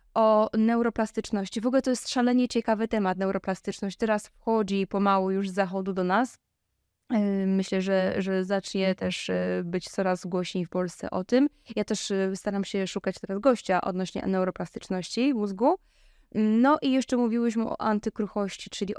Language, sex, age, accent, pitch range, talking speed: Polish, female, 20-39, native, 190-230 Hz, 150 wpm